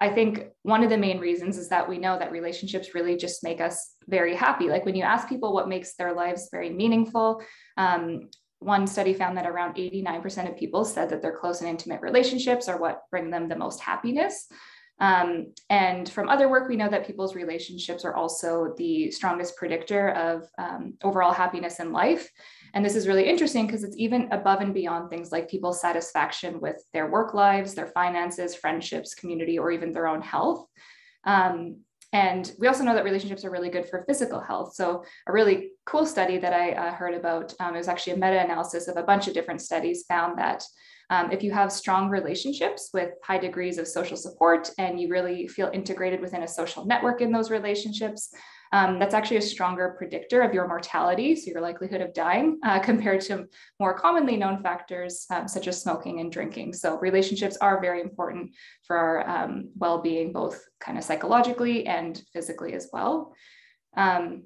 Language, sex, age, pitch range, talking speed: English, female, 20-39, 175-210 Hz, 195 wpm